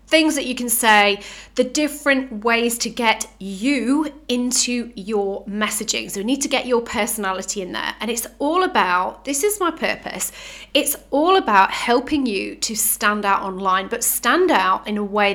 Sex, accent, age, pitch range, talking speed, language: female, British, 30-49, 210-280 Hz, 180 wpm, English